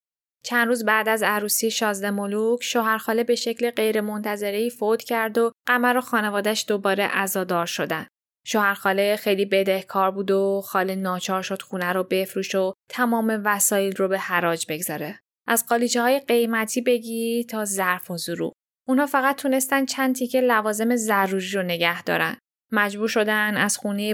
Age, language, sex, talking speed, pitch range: 10-29, Persian, female, 145 wpm, 190-230 Hz